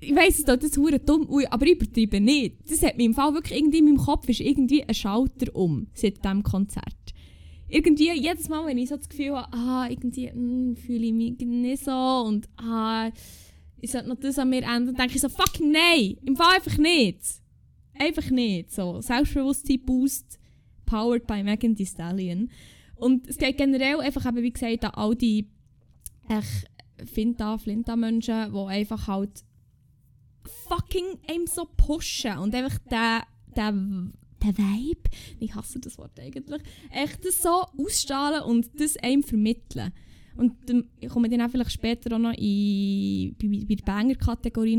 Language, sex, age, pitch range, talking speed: German, female, 10-29, 205-275 Hz, 165 wpm